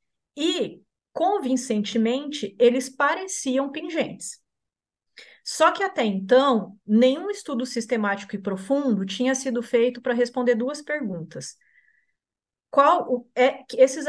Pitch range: 205-260 Hz